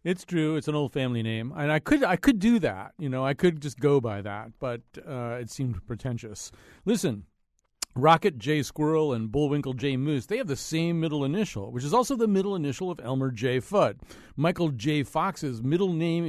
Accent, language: American, English